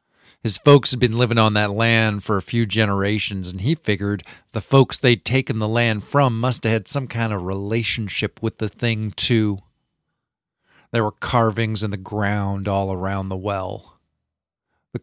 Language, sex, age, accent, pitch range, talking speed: English, male, 50-69, American, 100-115 Hz, 175 wpm